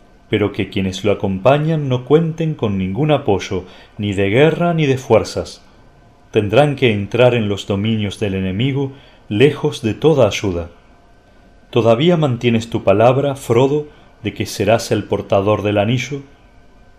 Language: Spanish